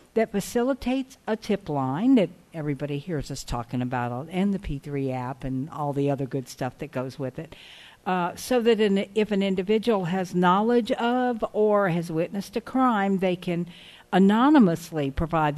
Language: English